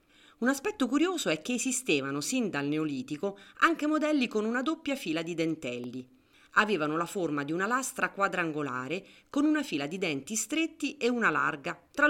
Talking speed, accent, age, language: 170 wpm, native, 30-49, Italian